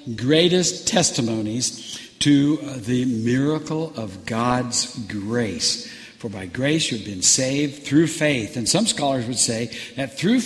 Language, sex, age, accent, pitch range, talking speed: English, male, 60-79, American, 120-170 Hz, 130 wpm